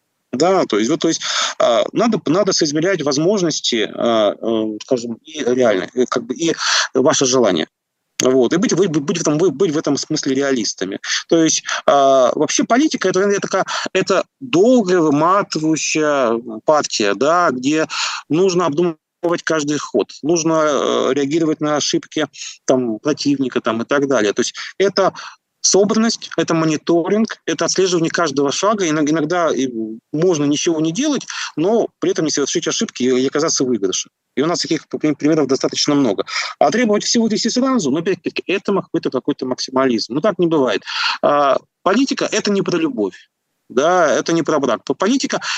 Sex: male